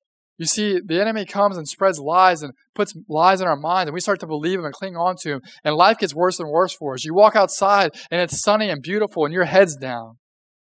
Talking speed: 255 wpm